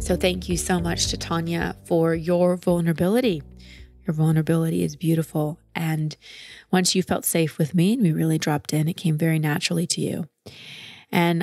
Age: 20-39